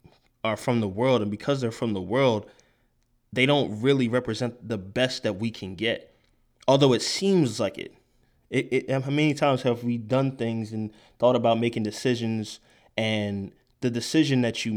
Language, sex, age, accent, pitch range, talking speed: English, male, 20-39, American, 105-125 Hz, 180 wpm